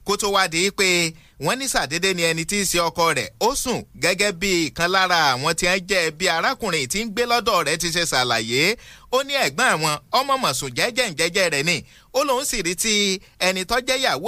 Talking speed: 170 wpm